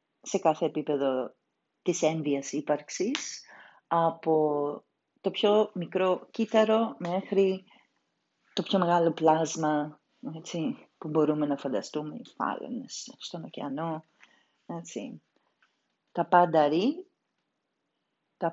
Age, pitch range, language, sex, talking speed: 40-59, 150-225 Hz, Greek, female, 95 wpm